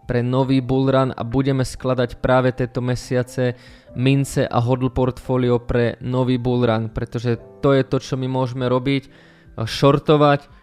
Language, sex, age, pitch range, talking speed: Slovak, male, 20-39, 120-135 Hz, 150 wpm